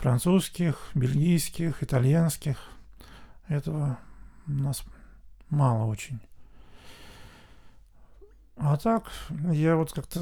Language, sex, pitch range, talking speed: Russian, male, 120-155 Hz, 75 wpm